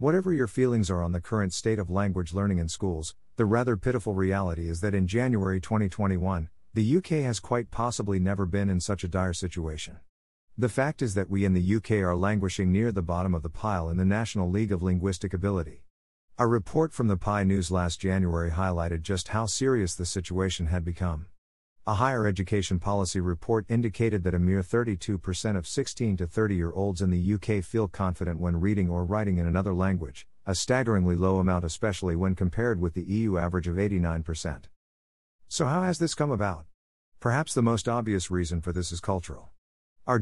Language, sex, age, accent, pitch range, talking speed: English, male, 50-69, American, 90-110 Hz, 190 wpm